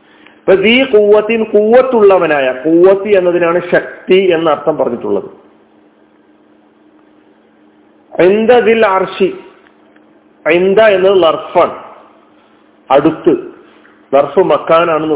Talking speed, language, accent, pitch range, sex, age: 70 wpm, Malayalam, native, 170-220 Hz, male, 50-69